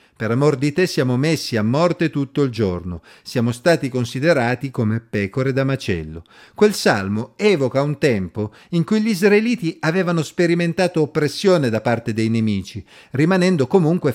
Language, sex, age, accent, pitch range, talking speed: Italian, male, 50-69, native, 110-155 Hz, 155 wpm